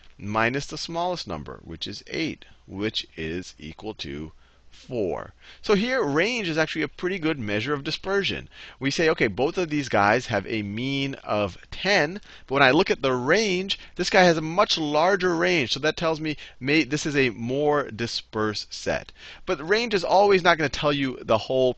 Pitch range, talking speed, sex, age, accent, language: 95-150 Hz, 195 wpm, male, 30-49, American, English